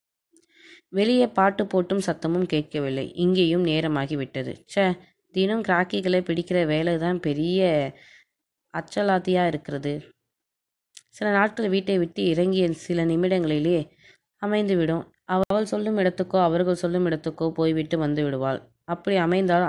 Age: 20-39